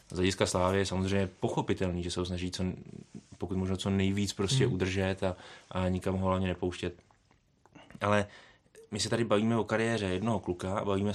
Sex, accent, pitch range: male, native, 95-110 Hz